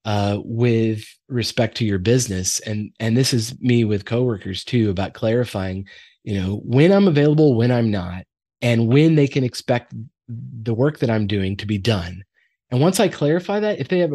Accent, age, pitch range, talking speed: American, 30-49, 110-150 Hz, 190 wpm